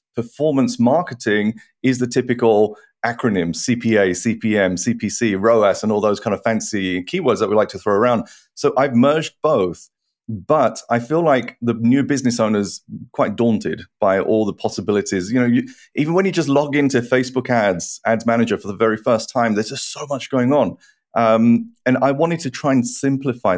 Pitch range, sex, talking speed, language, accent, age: 110-135 Hz, male, 185 wpm, English, British, 30-49